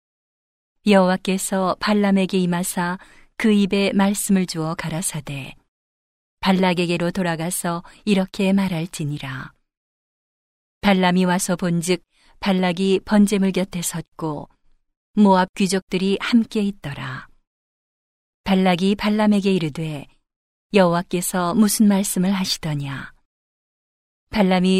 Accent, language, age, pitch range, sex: native, Korean, 40-59, 170-200 Hz, female